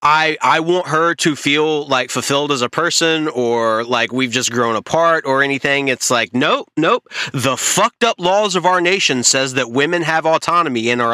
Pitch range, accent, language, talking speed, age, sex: 125-160 Hz, American, English, 200 wpm, 30-49, male